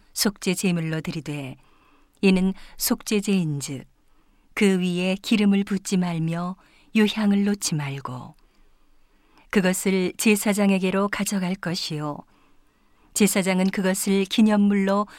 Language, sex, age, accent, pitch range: Korean, female, 50-69, native, 175-210 Hz